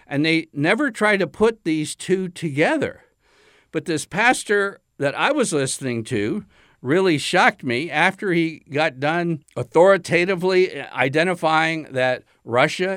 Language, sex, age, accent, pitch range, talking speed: English, male, 60-79, American, 145-195 Hz, 130 wpm